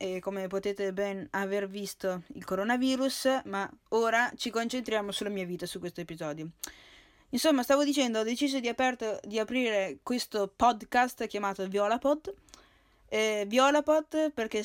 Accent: native